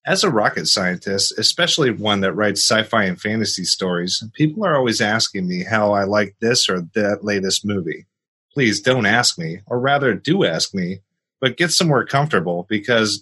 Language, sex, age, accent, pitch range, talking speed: English, male, 30-49, American, 95-120 Hz, 175 wpm